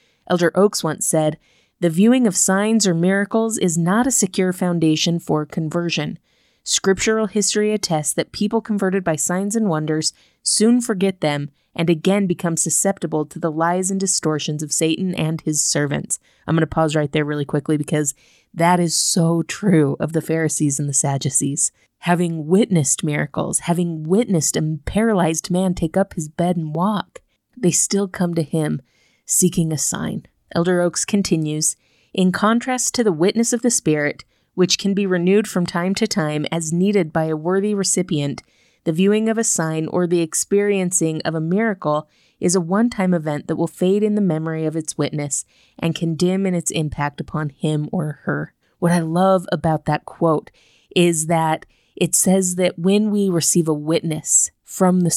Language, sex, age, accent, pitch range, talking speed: English, female, 30-49, American, 155-195 Hz, 175 wpm